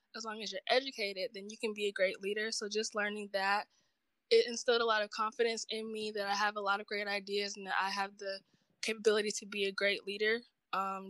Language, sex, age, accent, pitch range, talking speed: English, female, 10-29, American, 200-230 Hz, 240 wpm